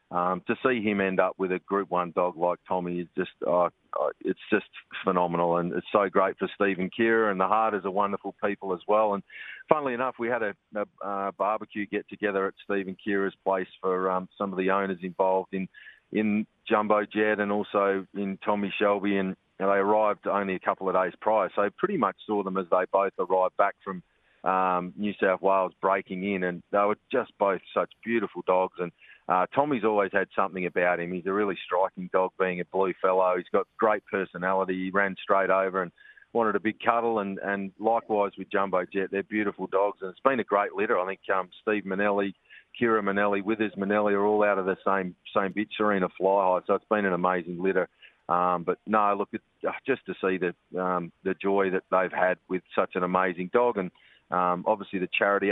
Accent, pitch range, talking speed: Australian, 95-105 Hz, 210 wpm